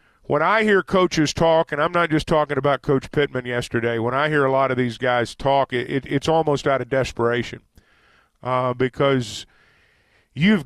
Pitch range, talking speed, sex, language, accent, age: 125-165 Hz, 185 wpm, male, English, American, 40-59